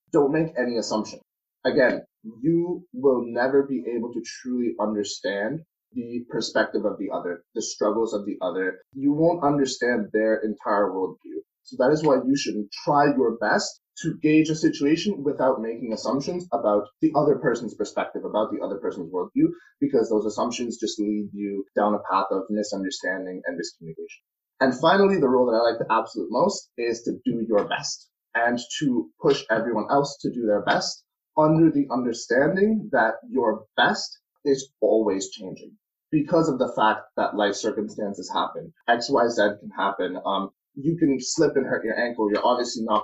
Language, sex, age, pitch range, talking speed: English, male, 20-39, 105-155 Hz, 175 wpm